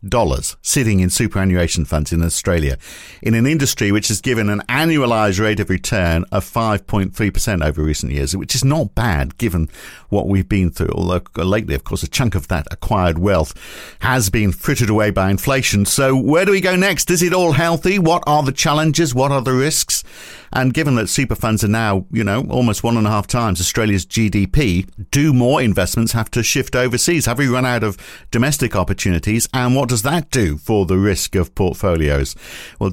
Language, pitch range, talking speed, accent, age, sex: English, 90-125 Hz, 195 wpm, British, 50-69, male